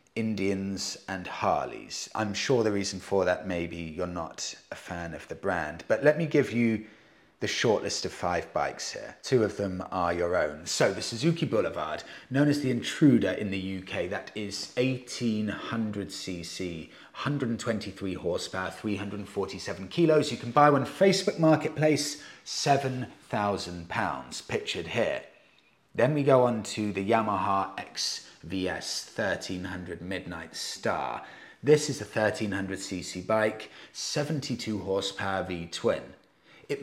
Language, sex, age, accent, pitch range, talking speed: English, male, 30-49, British, 95-125 Hz, 140 wpm